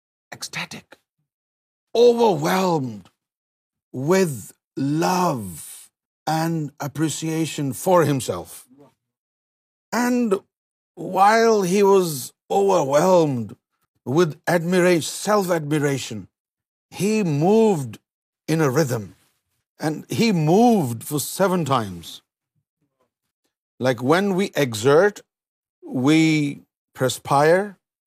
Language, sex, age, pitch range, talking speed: Urdu, male, 50-69, 135-185 Hz, 75 wpm